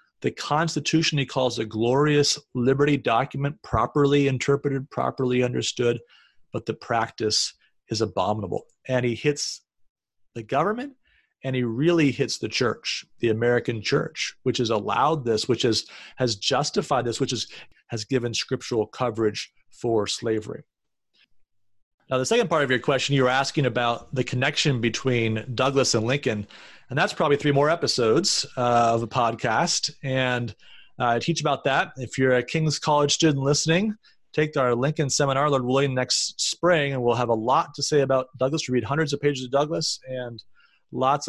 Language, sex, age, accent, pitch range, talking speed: English, male, 30-49, American, 120-150 Hz, 165 wpm